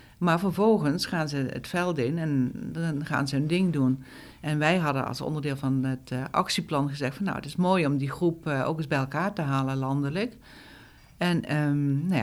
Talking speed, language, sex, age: 195 wpm, Dutch, female, 60-79